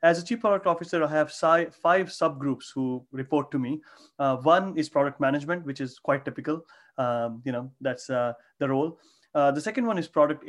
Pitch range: 135-160 Hz